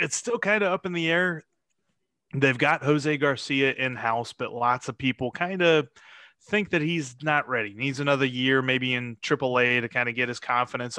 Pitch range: 125-155 Hz